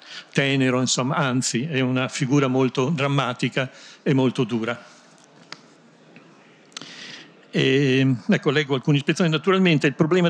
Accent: native